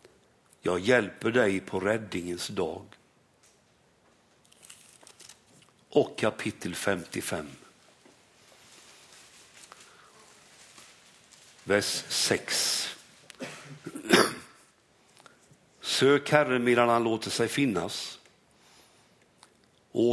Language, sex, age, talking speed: Swedish, male, 60-79, 55 wpm